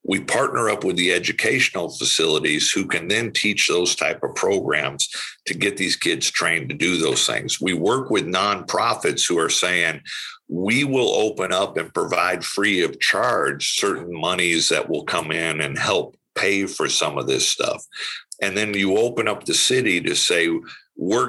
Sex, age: male, 50-69